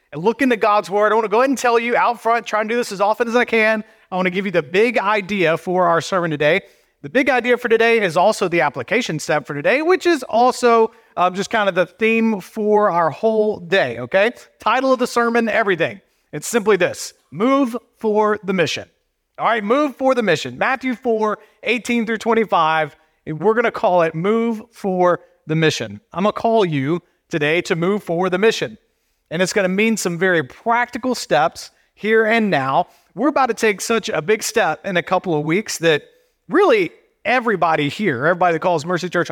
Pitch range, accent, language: 180-230 Hz, American, English